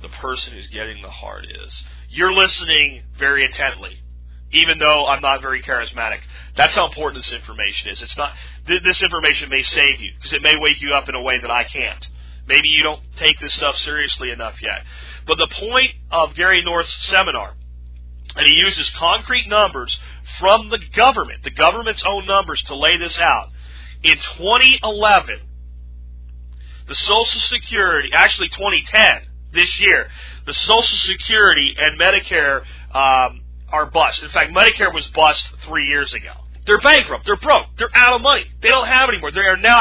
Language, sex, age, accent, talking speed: English, male, 40-59, American, 170 wpm